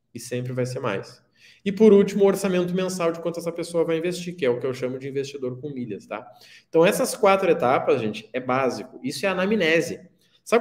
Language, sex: Portuguese, male